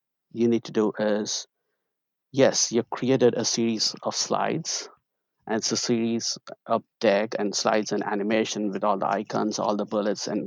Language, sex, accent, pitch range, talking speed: English, male, Indian, 110-120 Hz, 170 wpm